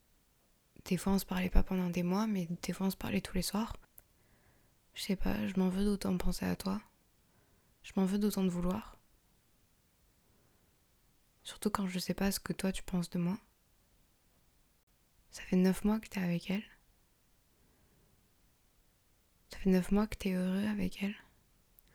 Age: 20-39